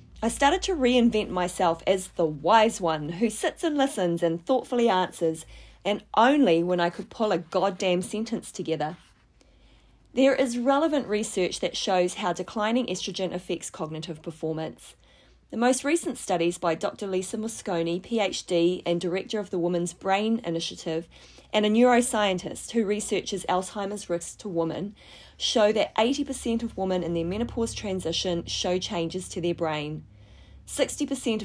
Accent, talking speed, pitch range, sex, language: Australian, 150 wpm, 170-225 Hz, female, English